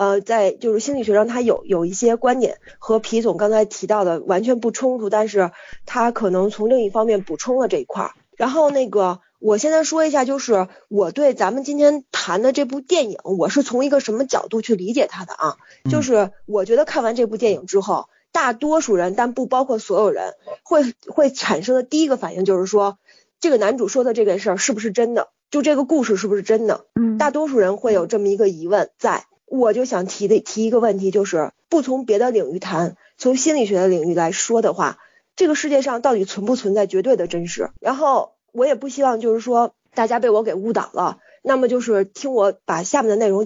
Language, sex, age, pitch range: Chinese, female, 20-39, 200-265 Hz